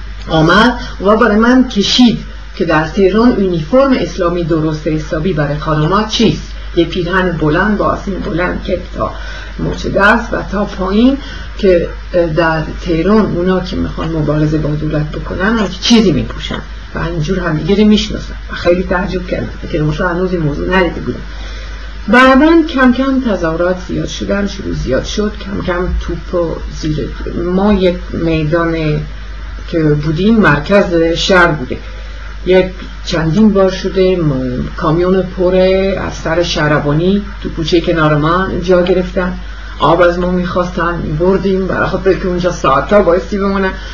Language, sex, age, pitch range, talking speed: Persian, female, 50-69, 170-210 Hz, 140 wpm